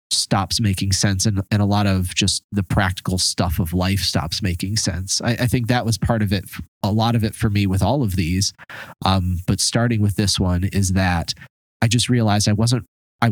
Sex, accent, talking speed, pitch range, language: male, American, 220 wpm, 95-115 Hz, English